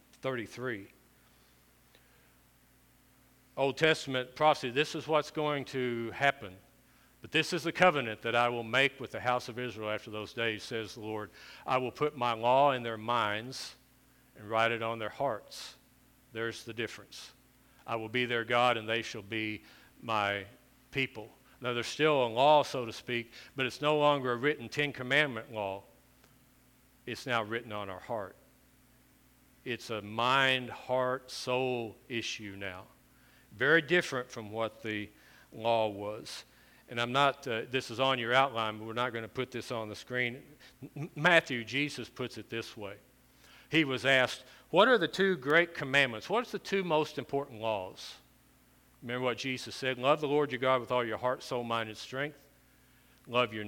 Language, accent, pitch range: English, American, 115-135 Hz